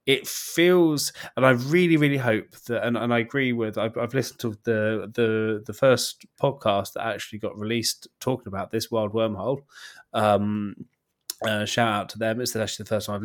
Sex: male